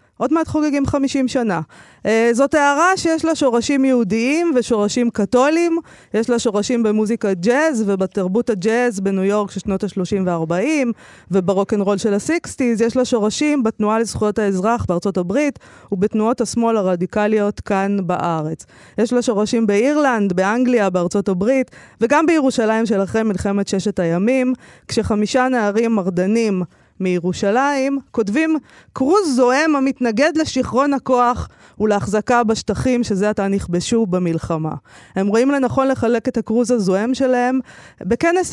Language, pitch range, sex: Hebrew, 200-260 Hz, female